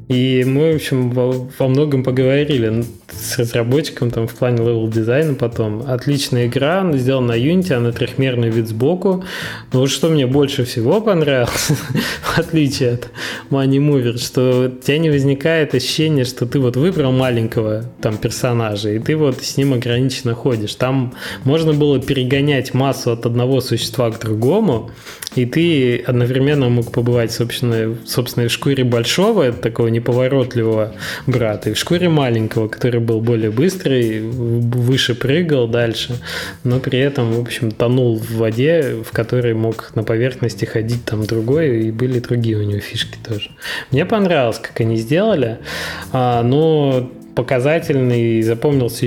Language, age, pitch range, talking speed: Russian, 20-39, 115-140 Hz, 150 wpm